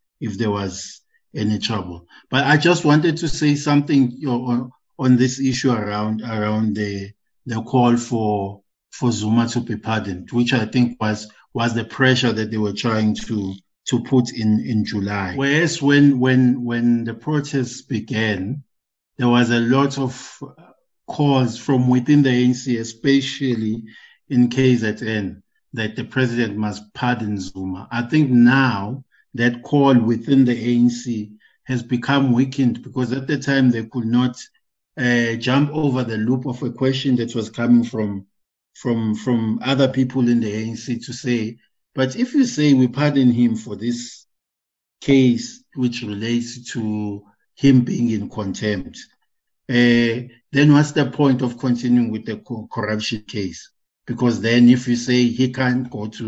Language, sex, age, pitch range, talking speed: English, male, 50-69, 110-130 Hz, 160 wpm